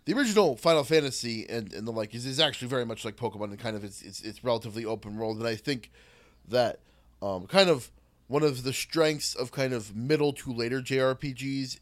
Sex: male